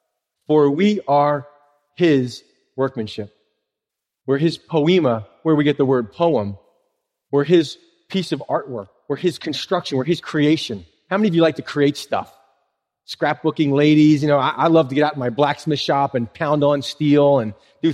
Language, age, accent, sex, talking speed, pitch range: English, 30-49, American, male, 175 wpm, 135-165 Hz